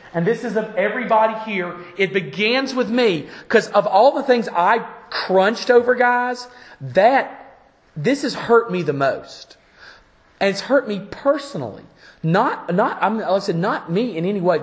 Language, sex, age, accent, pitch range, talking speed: English, male, 40-59, American, 160-235 Hz, 165 wpm